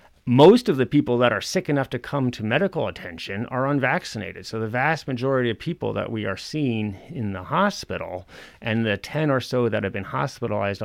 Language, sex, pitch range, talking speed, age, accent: English, male, 95-120 Hz, 205 wpm, 30-49, American